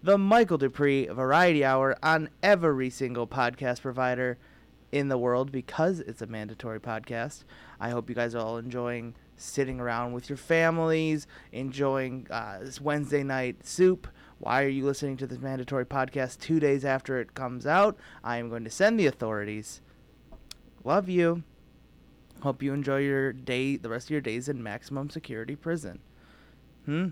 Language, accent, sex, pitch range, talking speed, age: English, American, male, 125-160 Hz, 165 wpm, 30-49